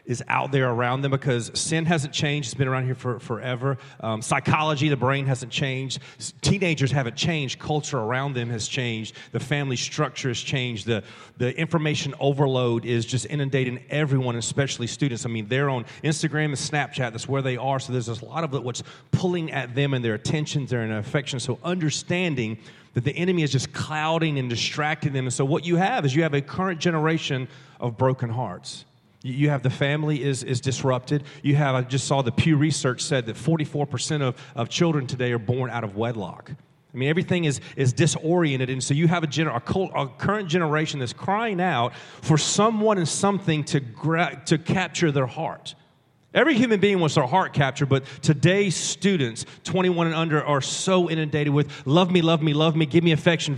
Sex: male